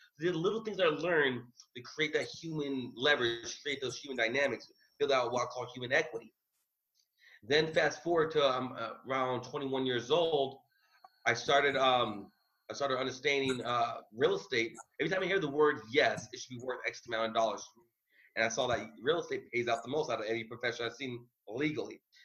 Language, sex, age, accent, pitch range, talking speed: English, male, 30-49, American, 120-165 Hz, 190 wpm